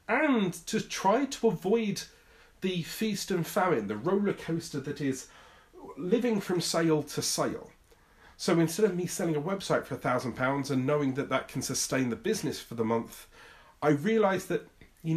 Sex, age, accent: male, 40-59, British